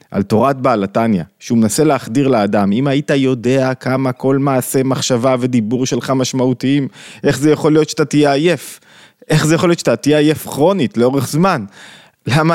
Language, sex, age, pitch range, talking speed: Hebrew, male, 20-39, 120-155 Hz, 170 wpm